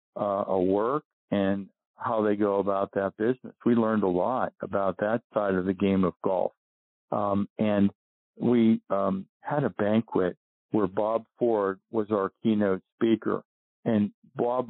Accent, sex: American, male